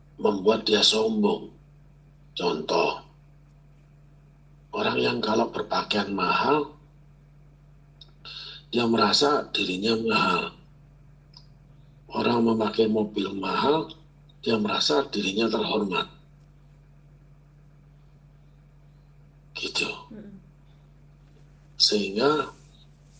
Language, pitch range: Indonesian, 120-150 Hz